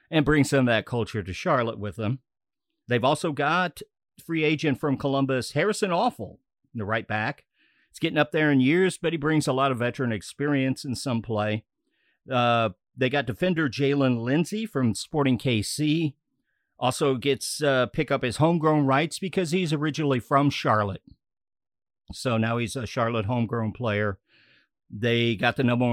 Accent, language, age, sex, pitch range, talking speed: American, English, 50-69, male, 115-155 Hz, 170 wpm